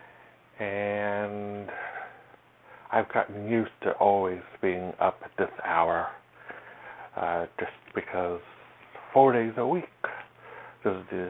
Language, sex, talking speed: English, male, 100 wpm